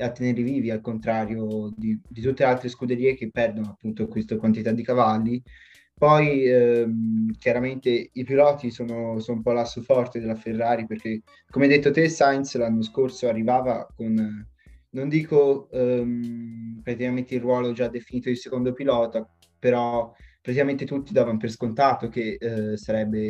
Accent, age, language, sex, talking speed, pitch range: native, 20-39, Italian, male, 155 wpm, 110-130 Hz